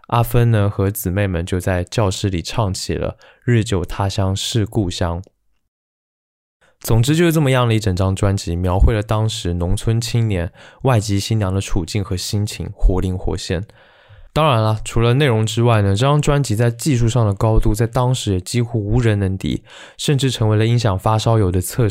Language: Chinese